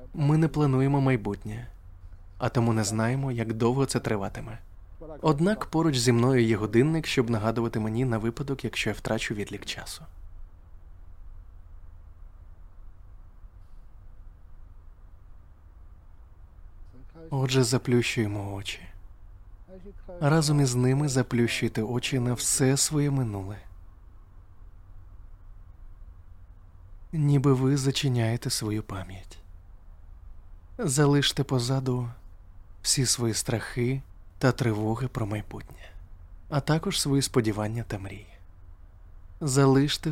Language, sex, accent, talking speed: Ukrainian, male, native, 90 wpm